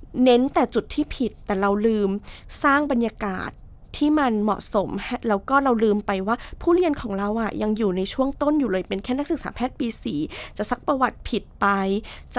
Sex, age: female, 20-39